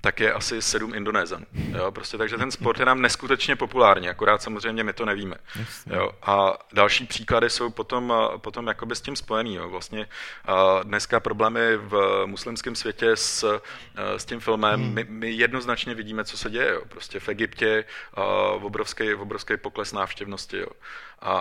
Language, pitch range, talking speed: Czech, 105-120 Hz, 160 wpm